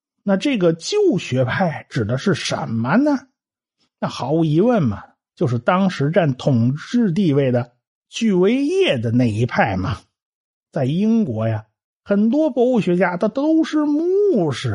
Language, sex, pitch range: Chinese, male, 135-225 Hz